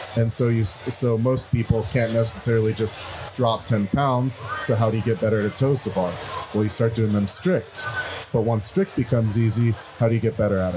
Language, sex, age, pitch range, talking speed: English, male, 30-49, 110-130 Hz, 215 wpm